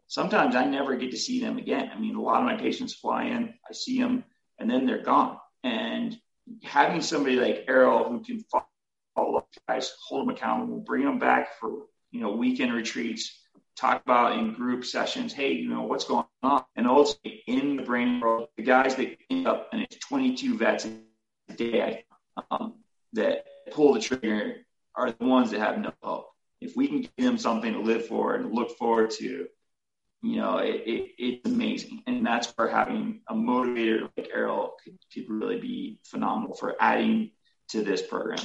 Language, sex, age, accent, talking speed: English, male, 30-49, American, 190 wpm